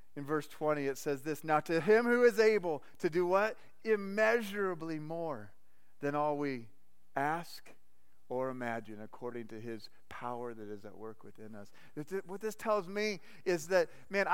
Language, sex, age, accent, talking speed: English, male, 40-59, American, 165 wpm